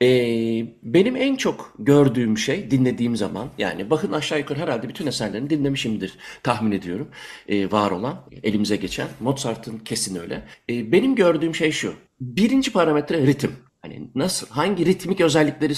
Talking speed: 150 wpm